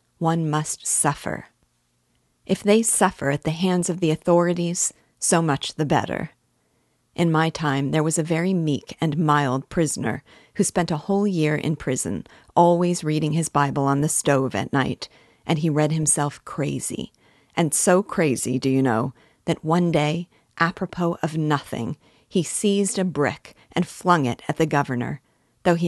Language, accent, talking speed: English, American, 165 wpm